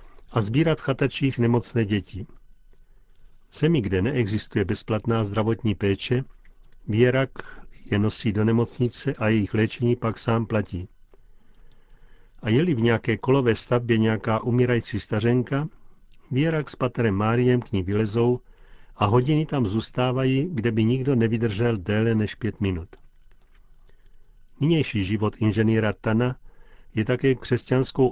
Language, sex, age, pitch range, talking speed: Czech, male, 50-69, 105-125 Hz, 120 wpm